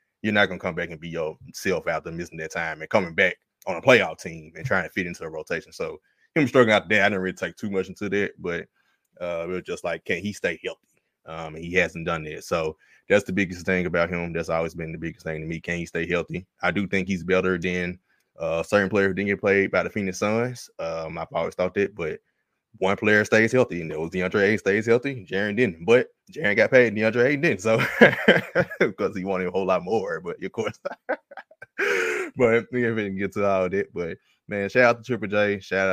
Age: 20-39